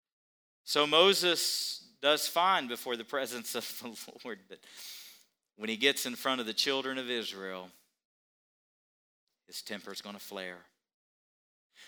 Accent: American